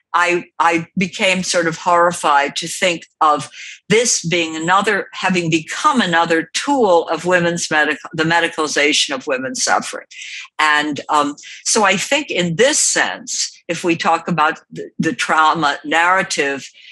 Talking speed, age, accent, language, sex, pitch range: 140 wpm, 60-79, American, English, female, 150-185 Hz